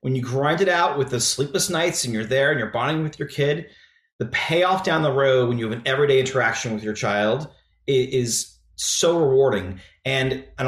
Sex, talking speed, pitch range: male, 210 wpm, 115-150 Hz